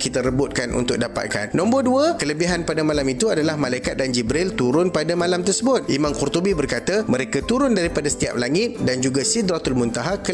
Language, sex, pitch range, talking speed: Malay, male, 140-200 Hz, 180 wpm